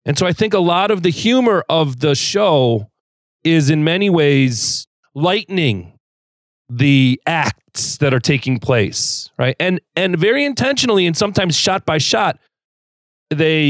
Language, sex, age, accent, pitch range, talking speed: English, male, 30-49, American, 120-170 Hz, 150 wpm